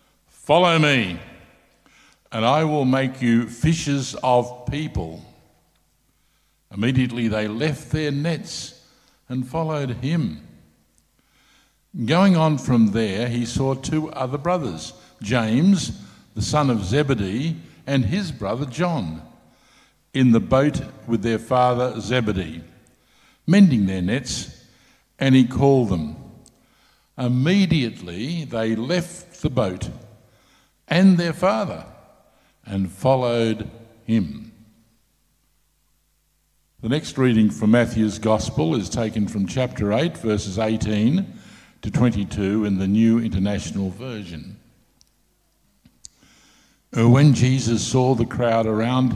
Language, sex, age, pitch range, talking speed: English, male, 60-79, 110-145 Hz, 105 wpm